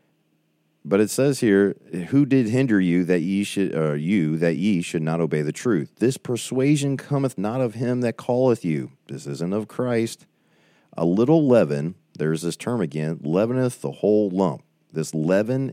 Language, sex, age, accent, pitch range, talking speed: English, male, 40-59, American, 80-120 Hz, 175 wpm